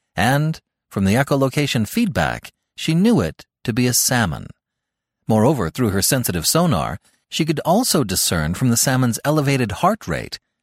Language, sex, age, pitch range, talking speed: English, male, 40-59, 110-160 Hz, 150 wpm